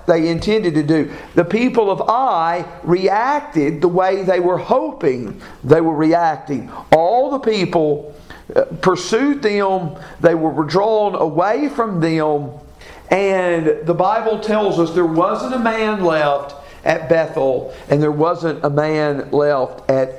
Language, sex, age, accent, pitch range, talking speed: English, male, 50-69, American, 165-225 Hz, 140 wpm